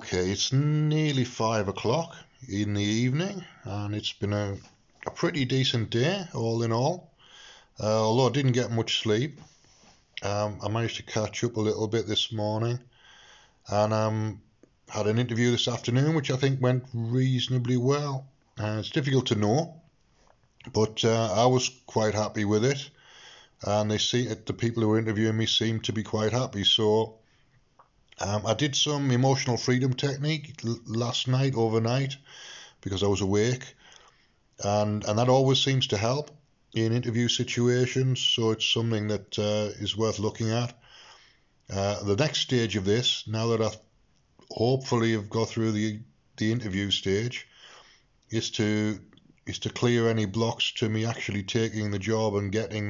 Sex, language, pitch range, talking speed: male, English, 105-125 Hz, 165 wpm